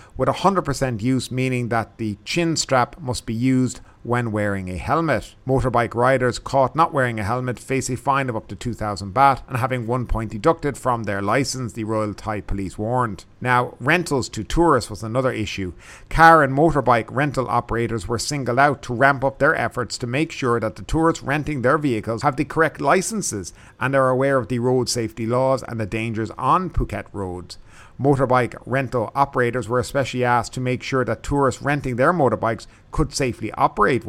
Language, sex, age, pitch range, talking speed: English, male, 50-69, 110-135 Hz, 190 wpm